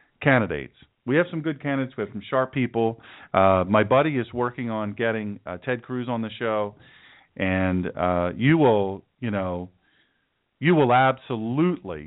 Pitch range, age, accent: 105-135 Hz, 40-59, American